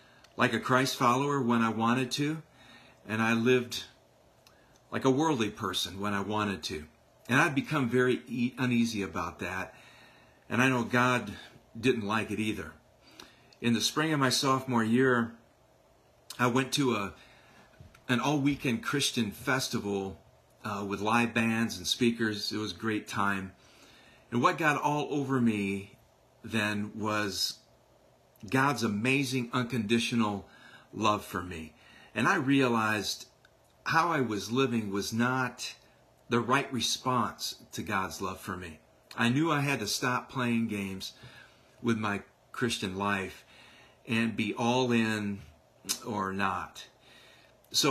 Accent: American